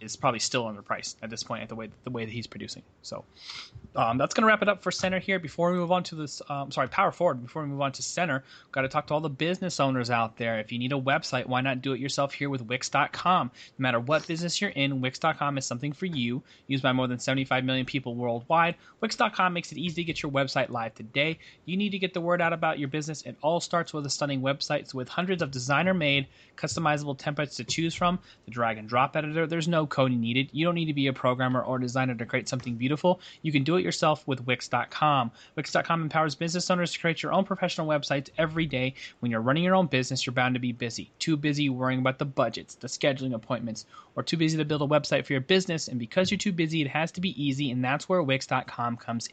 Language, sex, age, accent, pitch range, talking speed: English, male, 30-49, American, 125-165 Hz, 250 wpm